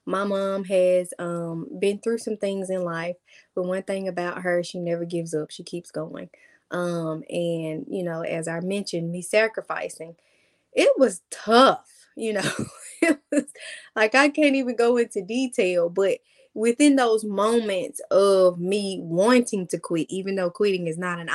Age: 20-39